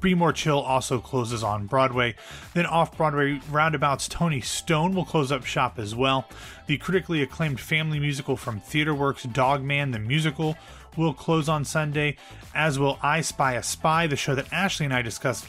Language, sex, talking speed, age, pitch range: English, male, 175 wpm, 30-49, 125-155 Hz